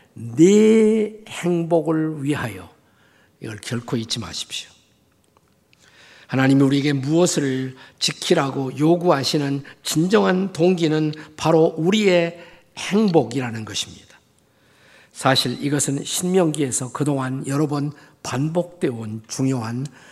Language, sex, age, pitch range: Korean, male, 50-69, 120-160 Hz